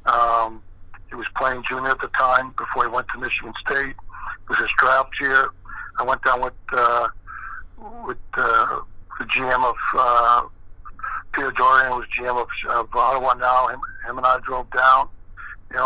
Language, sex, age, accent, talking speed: English, male, 60-79, American, 170 wpm